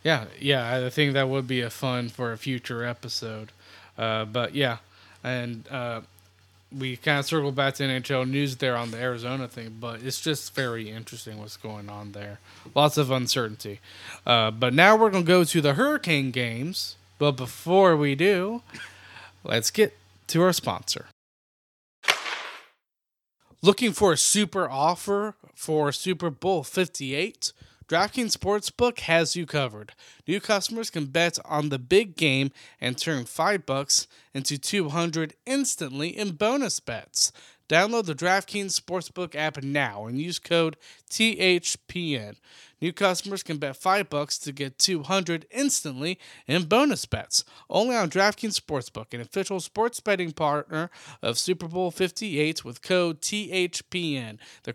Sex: male